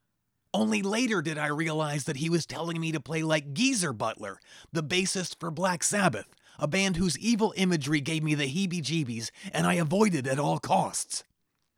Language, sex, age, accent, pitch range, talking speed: English, male, 30-49, American, 135-190 Hz, 180 wpm